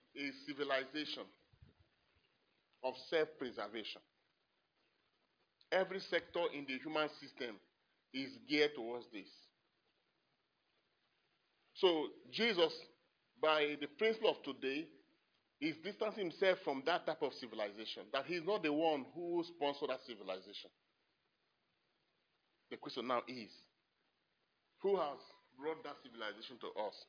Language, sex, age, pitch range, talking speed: English, male, 30-49, 135-195 Hz, 110 wpm